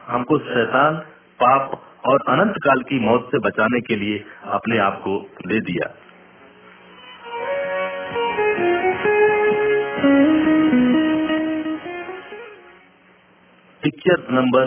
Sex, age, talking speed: male, 50-69, 75 wpm